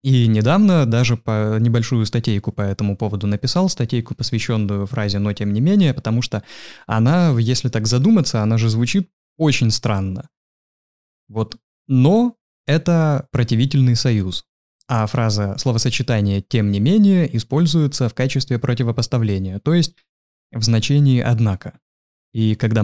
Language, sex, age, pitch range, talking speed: Russian, male, 20-39, 105-130 Hz, 130 wpm